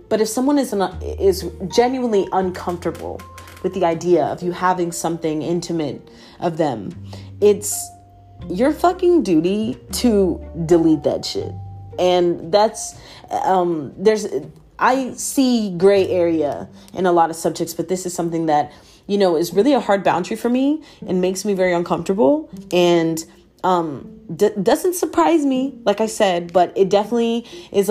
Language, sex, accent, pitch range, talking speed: English, female, American, 165-200 Hz, 150 wpm